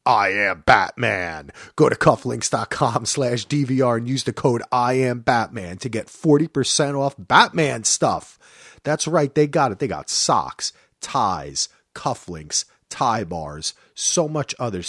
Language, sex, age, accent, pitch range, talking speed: English, male, 30-49, American, 115-160 Hz, 150 wpm